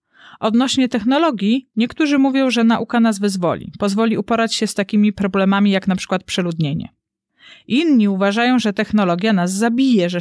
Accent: native